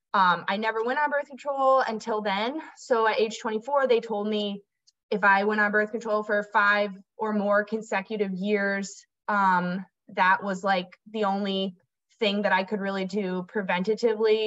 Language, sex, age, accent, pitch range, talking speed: English, female, 20-39, American, 190-230 Hz, 170 wpm